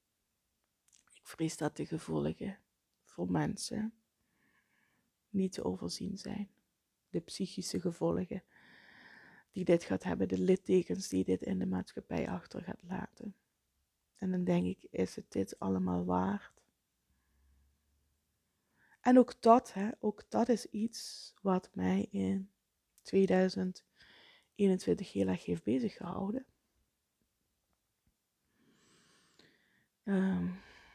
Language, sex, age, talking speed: Dutch, female, 20-39, 105 wpm